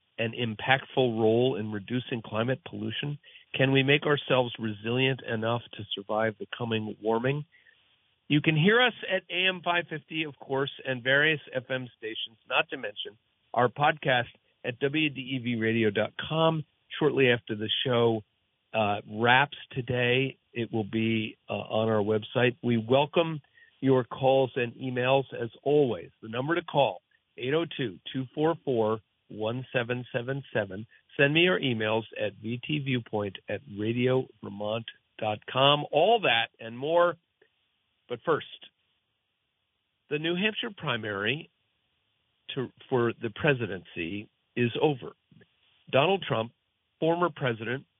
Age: 50-69